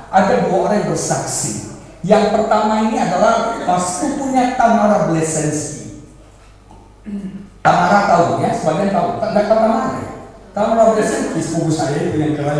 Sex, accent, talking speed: male, Indonesian, 125 wpm